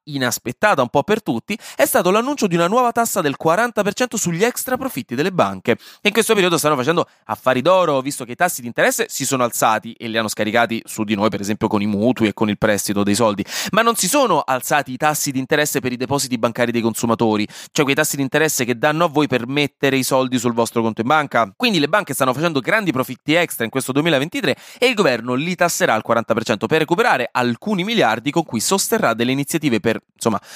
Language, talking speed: Italian, 225 wpm